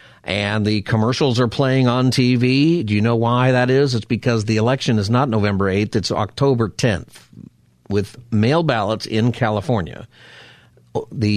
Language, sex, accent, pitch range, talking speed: English, male, American, 95-120 Hz, 160 wpm